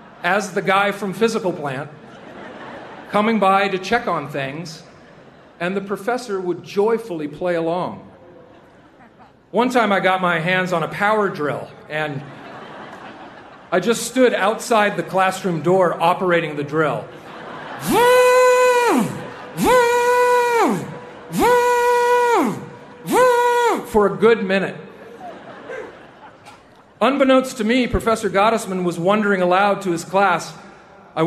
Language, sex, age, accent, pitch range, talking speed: English, male, 40-59, American, 165-215 Hz, 105 wpm